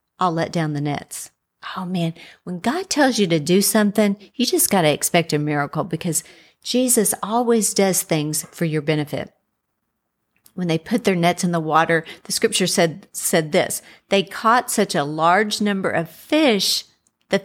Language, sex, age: English, female, 50-69